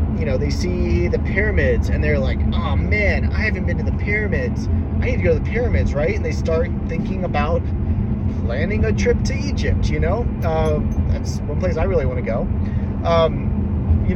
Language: English